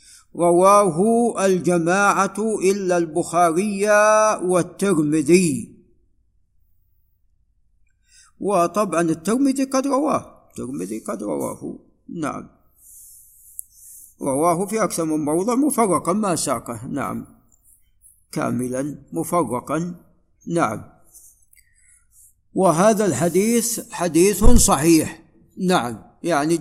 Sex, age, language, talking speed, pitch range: male, 60-79, Arabic, 70 wpm, 150-190 Hz